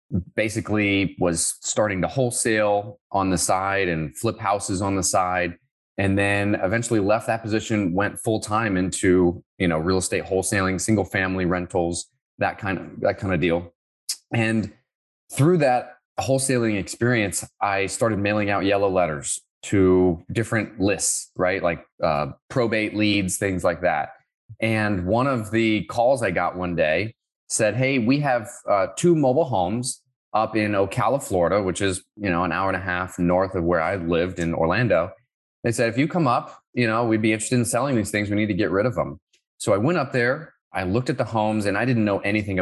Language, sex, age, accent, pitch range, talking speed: English, male, 20-39, American, 95-115 Hz, 190 wpm